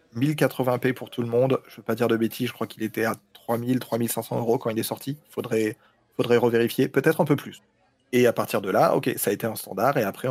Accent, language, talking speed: French, French, 250 wpm